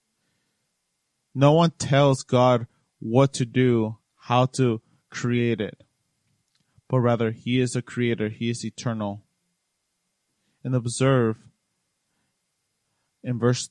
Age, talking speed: 20-39, 105 wpm